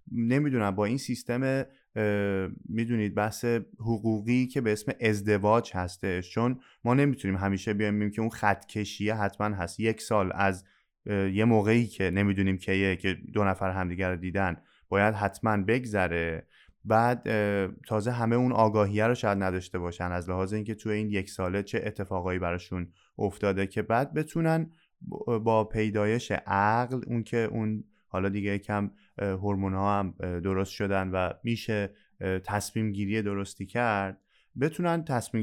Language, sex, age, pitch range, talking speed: Persian, male, 20-39, 100-130 Hz, 145 wpm